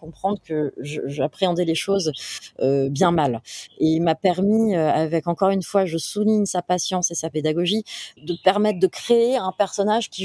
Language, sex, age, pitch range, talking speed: French, female, 20-39, 160-200 Hz, 185 wpm